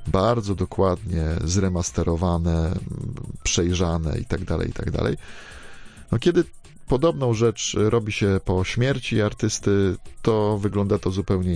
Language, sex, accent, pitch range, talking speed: Polish, male, native, 85-105 Hz, 100 wpm